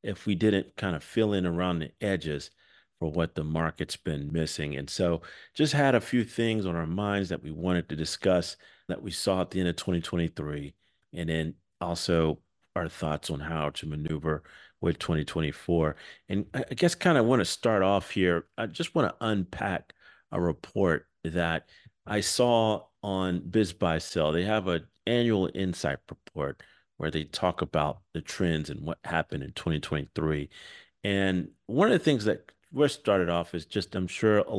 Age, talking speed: 40-59, 180 wpm